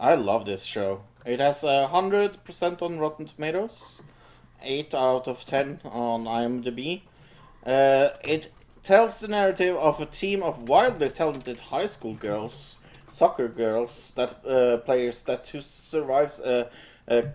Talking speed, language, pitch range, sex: 140 wpm, English, 120-155 Hz, male